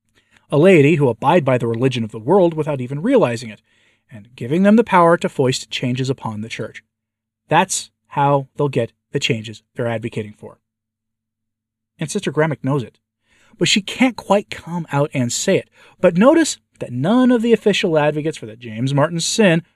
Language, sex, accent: English, male, American